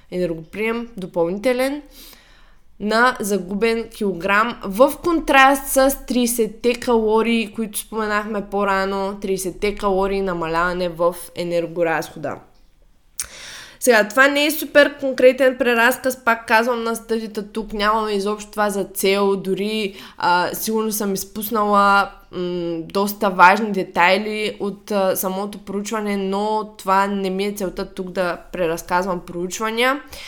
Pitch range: 195-245 Hz